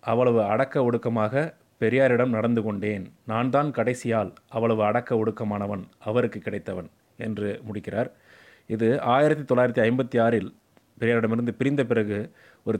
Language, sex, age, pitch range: Tamil, male, 30-49, 110-135 Hz